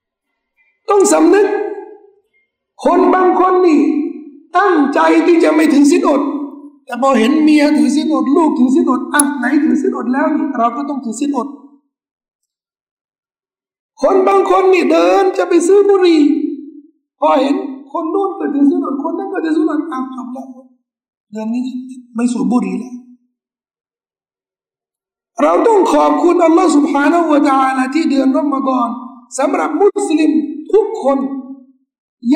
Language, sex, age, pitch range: Thai, male, 60-79, 260-335 Hz